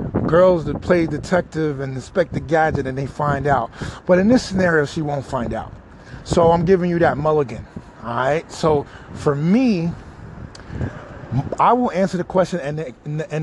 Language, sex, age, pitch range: English, male, 30-49, 130-180 Hz